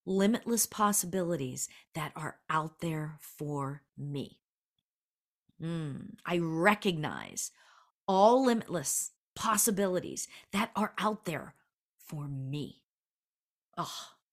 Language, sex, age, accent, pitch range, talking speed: English, female, 40-59, American, 155-210 Hz, 90 wpm